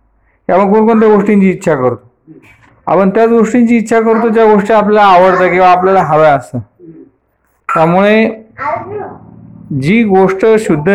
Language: Marathi